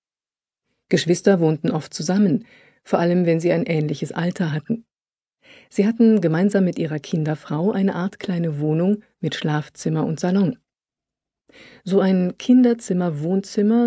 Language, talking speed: German, 125 wpm